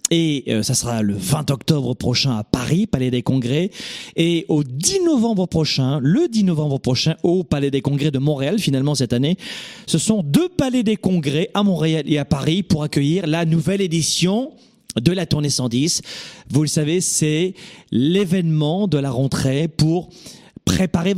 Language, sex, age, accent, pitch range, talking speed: French, male, 40-59, French, 130-170 Hz, 175 wpm